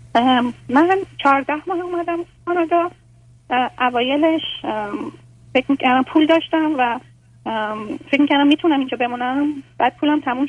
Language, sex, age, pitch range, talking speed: Persian, female, 30-49, 225-295 Hz, 115 wpm